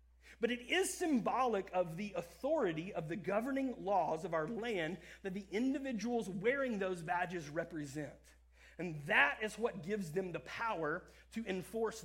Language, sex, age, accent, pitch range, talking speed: English, male, 30-49, American, 170-235 Hz, 155 wpm